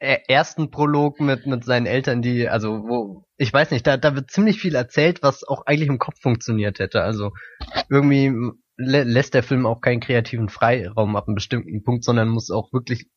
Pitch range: 115-135 Hz